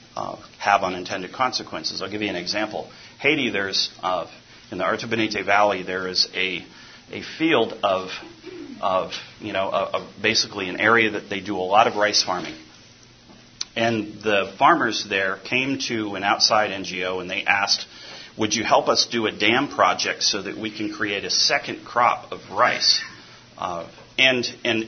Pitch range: 100-115 Hz